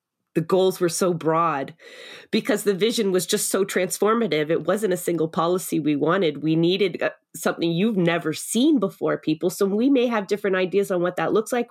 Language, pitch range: English, 155-190 Hz